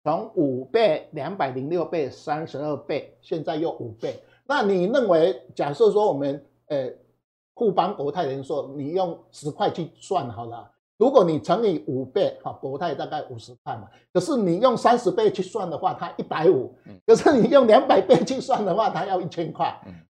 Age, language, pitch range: 50-69, Chinese, 145-235 Hz